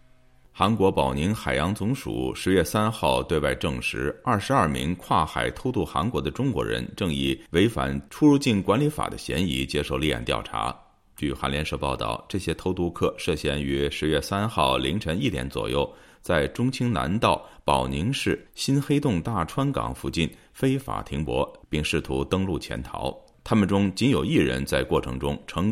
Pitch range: 65-110 Hz